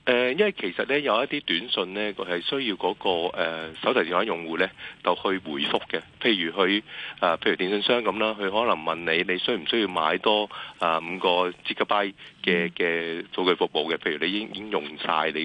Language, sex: Chinese, male